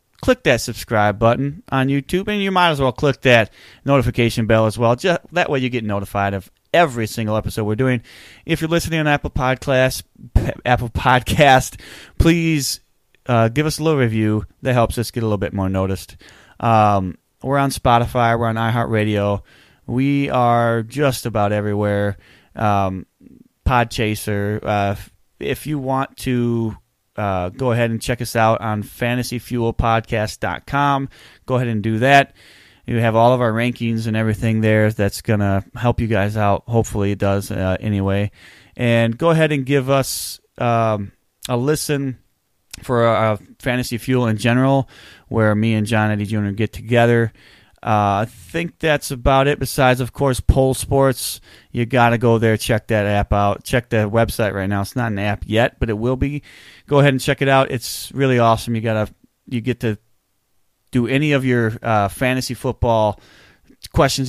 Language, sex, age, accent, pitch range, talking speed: English, male, 20-39, American, 105-130 Hz, 175 wpm